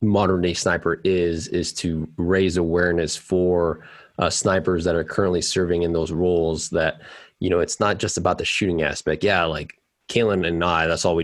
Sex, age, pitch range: male, 20-39, 85-90 Hz